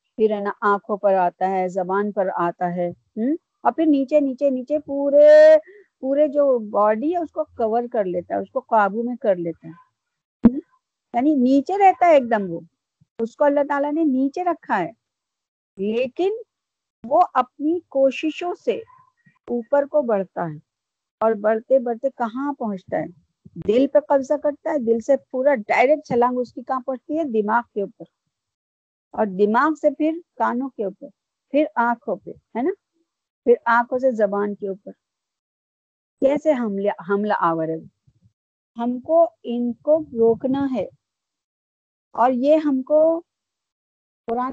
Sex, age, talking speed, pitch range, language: female, 50-69, 150 wpm, 210-290 Hz, Urdu